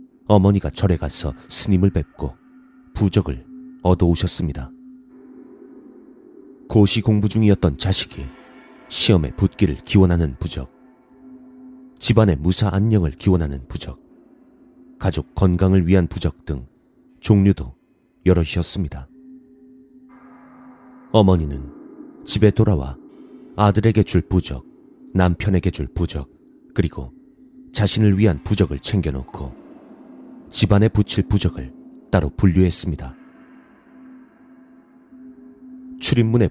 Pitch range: 85-130 Hz